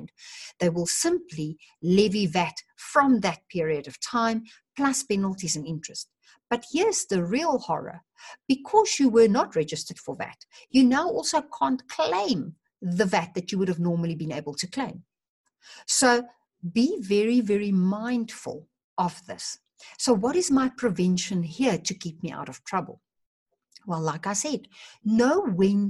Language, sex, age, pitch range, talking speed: English, female, 60-79, 175-260 Hz, 155 wpm